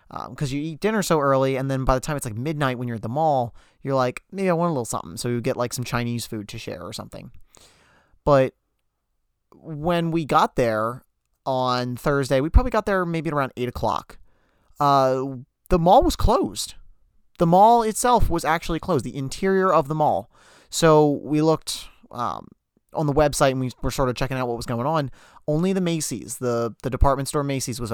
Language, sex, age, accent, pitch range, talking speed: English, male, 30-49, American, 120-150 Hz, 205 wpm